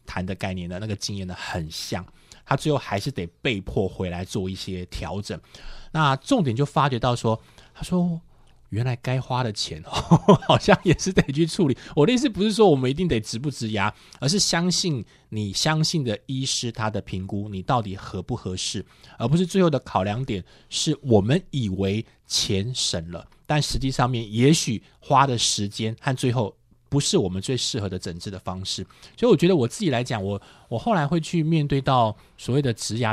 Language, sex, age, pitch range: Chinese, male, 20-39, 100-150 Hz